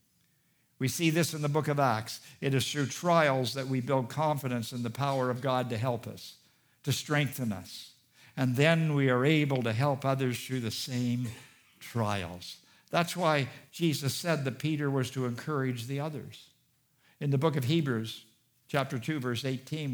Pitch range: 120-150 Hz